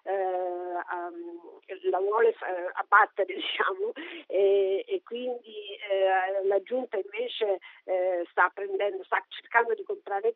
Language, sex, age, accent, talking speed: Italian, female, 50-69, native, 105 wpm